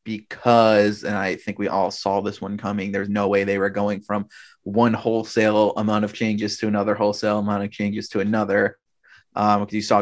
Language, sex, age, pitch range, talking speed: English, male, 30-49, 100-110 Hz, 205 wpm